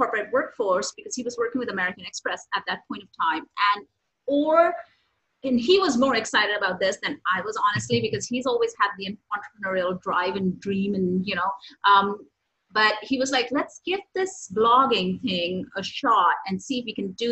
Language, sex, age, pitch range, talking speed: English, female, 30-49, 195-250 Hz, 200 wpm